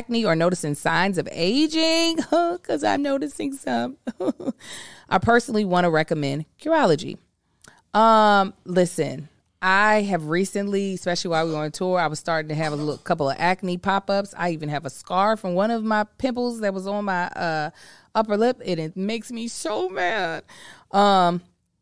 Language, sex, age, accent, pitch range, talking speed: English, female, 20-39, American, 160-215 Hz, 175 wpm